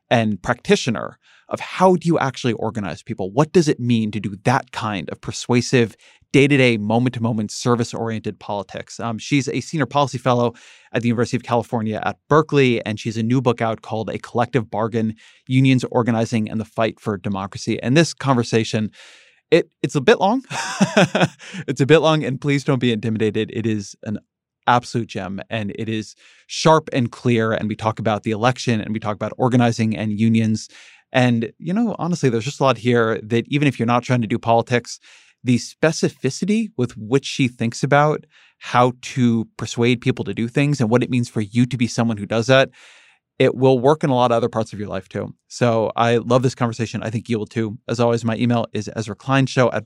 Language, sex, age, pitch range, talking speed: English, male, 20-39, 110-135 Hz, 205 wpm